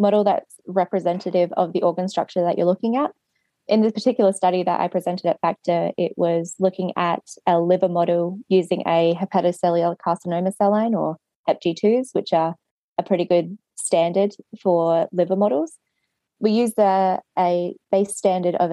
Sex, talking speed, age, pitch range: female, 165 wpm, 20-39, 170-195 Hz